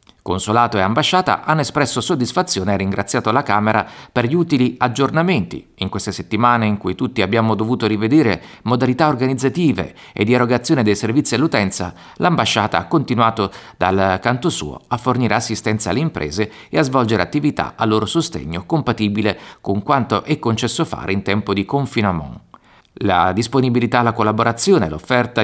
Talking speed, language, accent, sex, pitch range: 150 wpm, Italian, native, male, 100-140 Hz